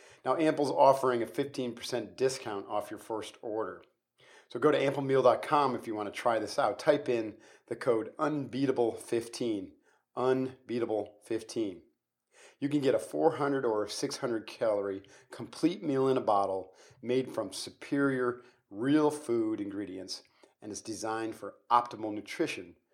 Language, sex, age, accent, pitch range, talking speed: English, male, 40-59, American, 115-140 Hz, 135 wpm